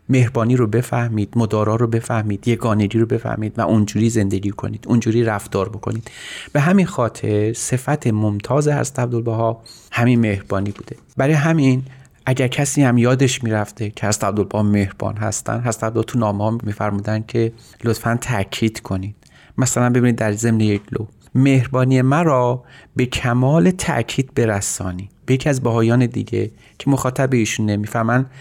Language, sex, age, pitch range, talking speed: Persian, male, 30-49, 105-130 Hz, 150 wpm